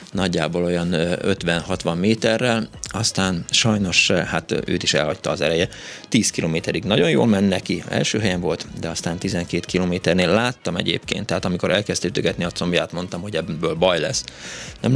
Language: Hungarian